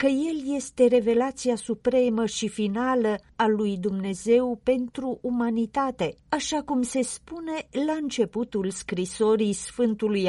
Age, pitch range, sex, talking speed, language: 40-59, 200-260 Hz, female, 115 wpm, Romanian